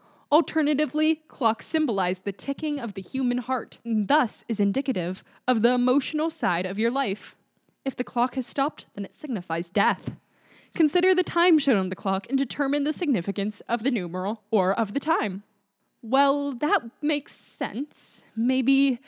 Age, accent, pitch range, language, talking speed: 10-29, American, 195-275 Hz, English, 165 wpm